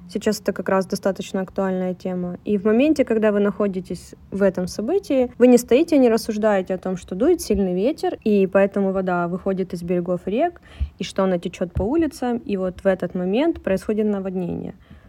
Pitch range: 185-230 Hz